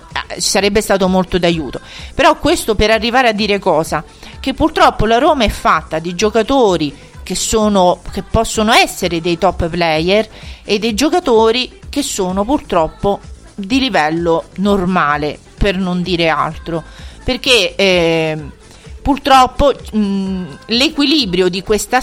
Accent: native